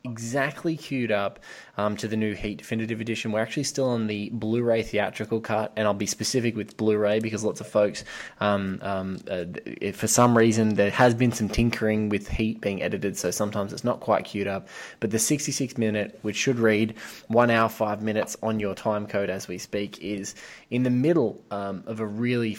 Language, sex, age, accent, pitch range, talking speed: English, male, 20-39, Australian, 105-115 Hz, 200 wpm